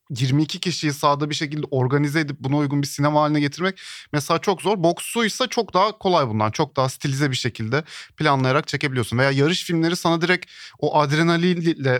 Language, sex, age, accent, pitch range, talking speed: Turkish, male, 40-59, native, 140-180 Hz, 180 wpm